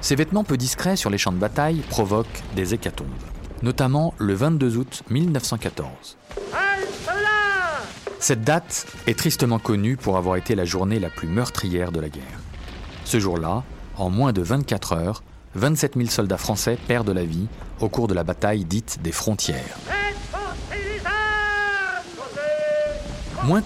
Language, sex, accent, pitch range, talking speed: French, male, French, 95-140 Hz, 140 wpm